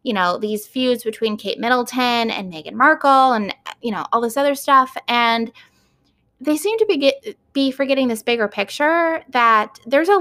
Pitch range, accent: 205-280 Hz, American